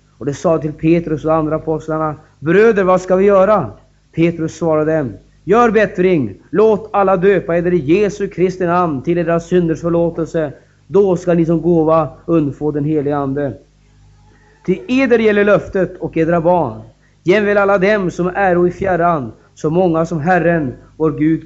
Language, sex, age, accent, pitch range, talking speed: Swedish, male, 30-49, native, 150-190 Hz, 170 wpm